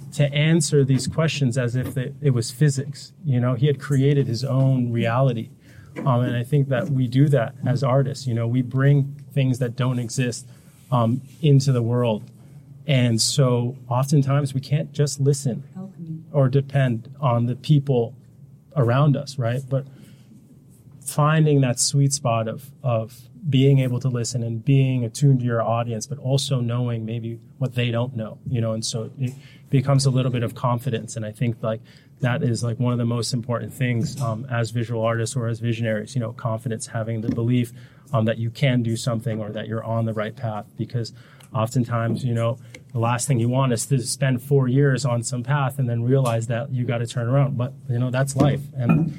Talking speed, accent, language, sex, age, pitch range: 200 wpm, American, English, male, 30-49, 120-140 Hz